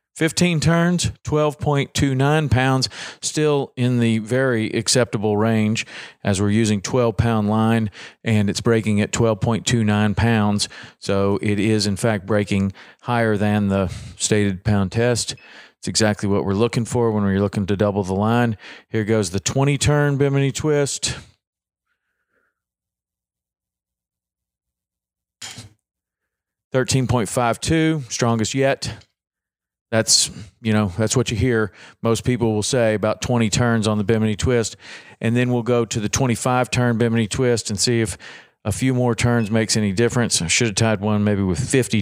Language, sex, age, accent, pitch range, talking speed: English, male, 40-59, American, 105-120 Hz, 145 wpm